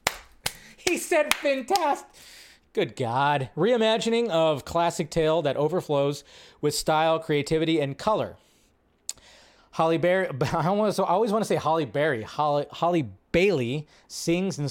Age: 30-49